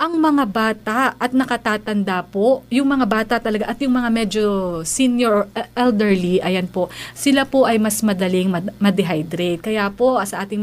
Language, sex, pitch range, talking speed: Filipino, female, 205-270 Hz, 165 wpm